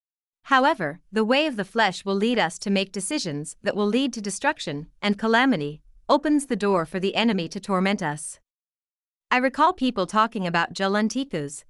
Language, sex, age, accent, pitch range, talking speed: English, female, 30-49, American, 180-240 Hz, 175 wpm